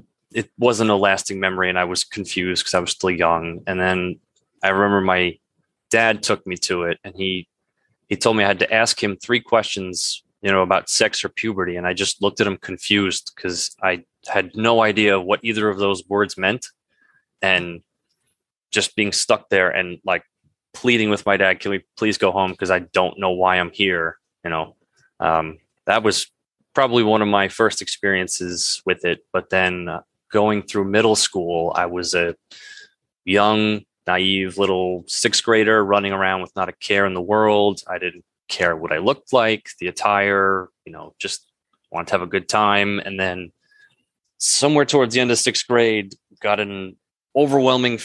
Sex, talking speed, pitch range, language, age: male, 185 wpm, 90-110 Hz, English, 20-39